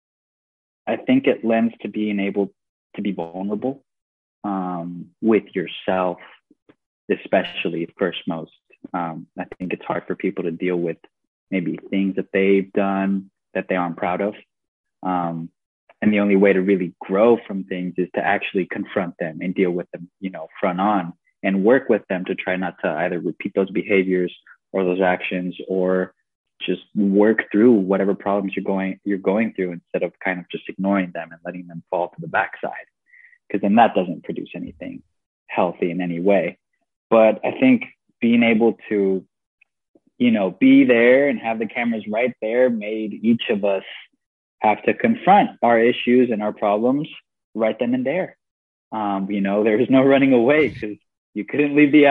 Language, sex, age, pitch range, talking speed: English, male, 20-39, 95-115 Hz, 175 wpm